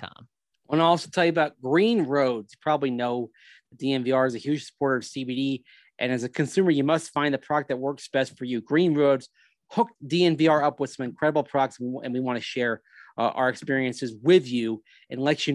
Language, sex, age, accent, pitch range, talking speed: English, male, 30-49, American, 125-150 Hz, 215 wpm